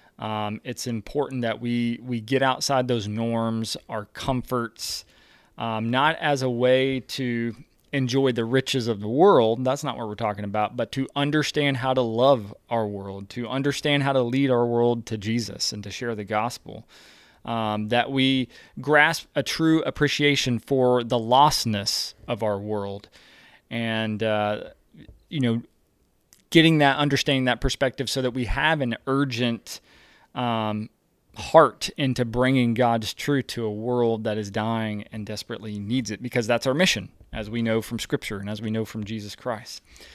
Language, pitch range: English, 110-135 Hz